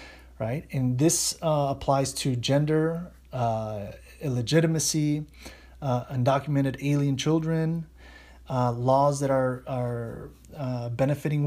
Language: English